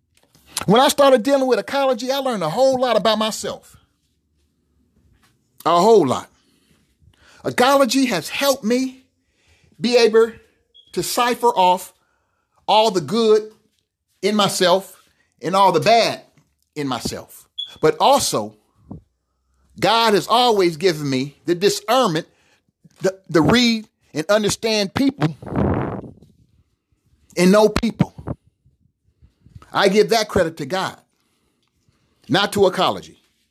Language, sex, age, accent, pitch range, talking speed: English, male, 40-59, American, 155-225 Hz, 110 wpm